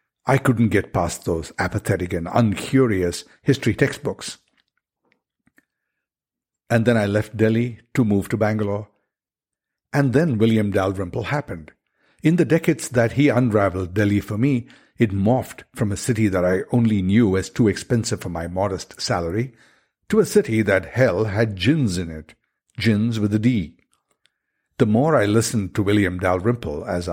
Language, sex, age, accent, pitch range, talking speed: English, male, 60-79, Indian, 100-125 Hz, 155 wpm